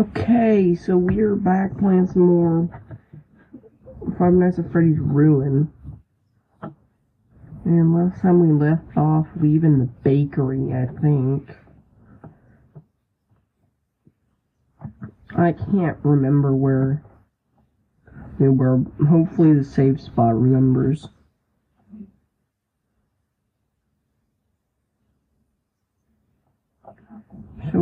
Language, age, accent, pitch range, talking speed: English, 50-69, American, 130-175 Hz, 80 wpm